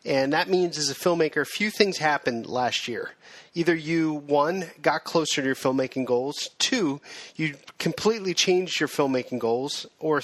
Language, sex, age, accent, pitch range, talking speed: English, male, 40-59, American, 135-170 Hz, 170 wpm